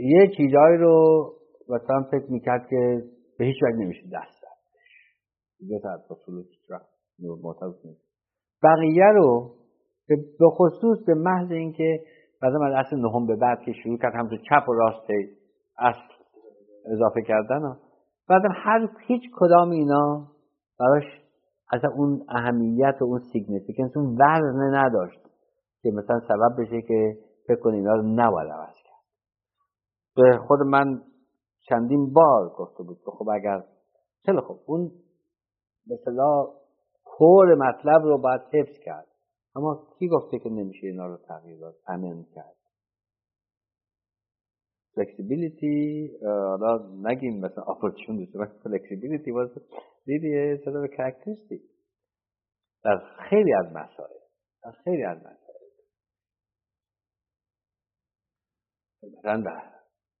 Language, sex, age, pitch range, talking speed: Persian, male, 50-69, 105-155 Hz, 115 wpm